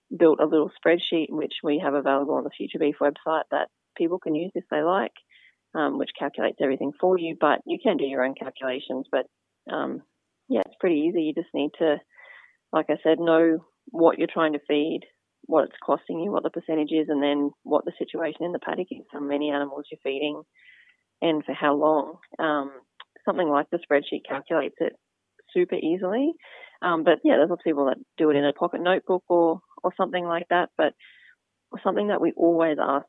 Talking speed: 205 wpm